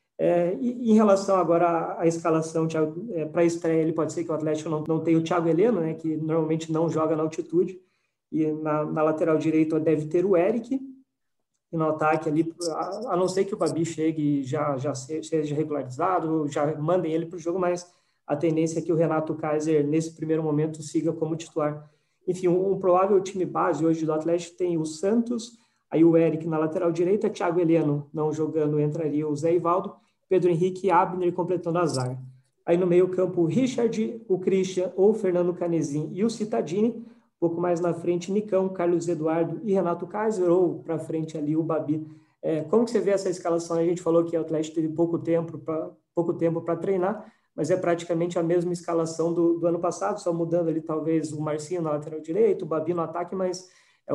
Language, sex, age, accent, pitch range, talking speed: Portuguese, male, 20-39, Brazilian, 155-180 Hz, 195 wpm